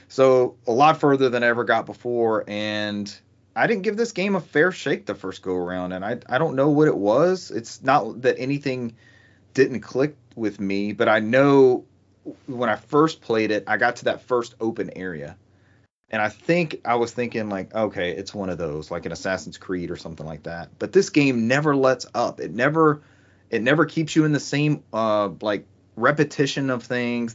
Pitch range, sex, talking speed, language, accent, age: 105-135 Hz, male, 205 wpm, English, American, 30-49